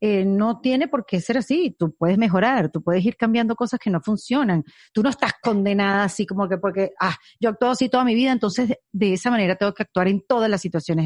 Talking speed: 240 wpm